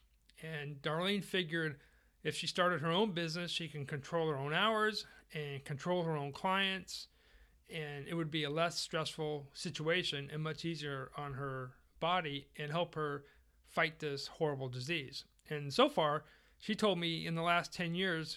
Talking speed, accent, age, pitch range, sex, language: 170 wpm, American, 40-59, 140-170 Hz, male, English